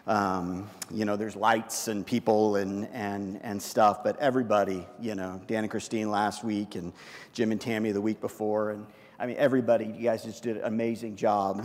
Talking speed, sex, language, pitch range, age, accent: 195 wpm, male, English, 115-195 Hz, 40-59, American